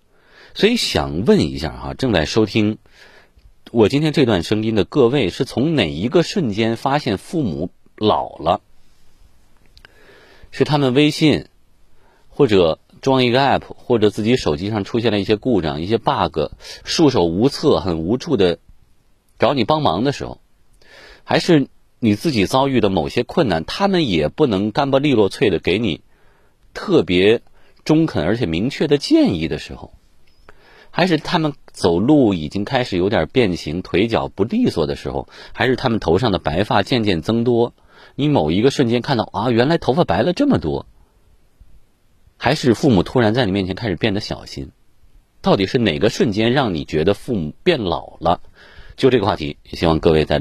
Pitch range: 85-130 Hz